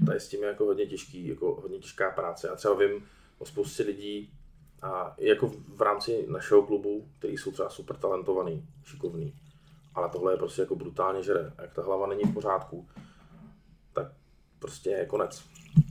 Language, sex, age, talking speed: Czech, male, 20-39, 175 wpm